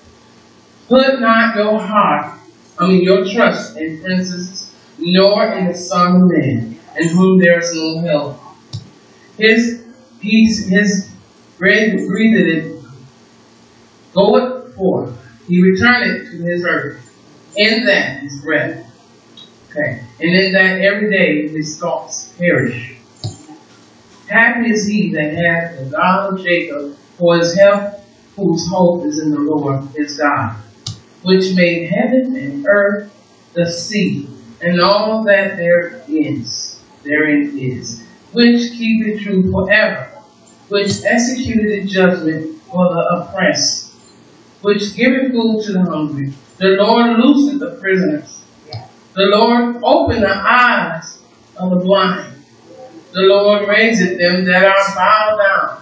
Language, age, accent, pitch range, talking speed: English, 40-59, American, 160-210 Hz, 130 wpm